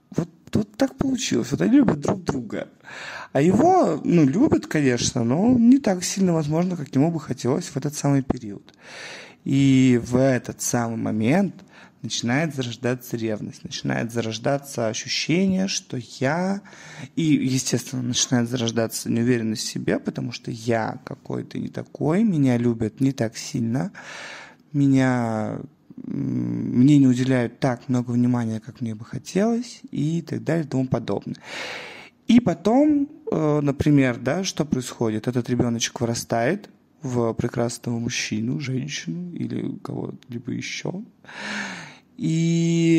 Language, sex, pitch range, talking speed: Russian, male, 120-170 Hz, 125 wpm